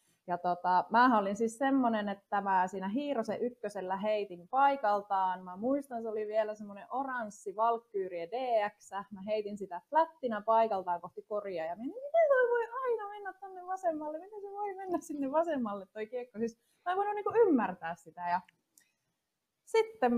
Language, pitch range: Finnish, 185-270 Hz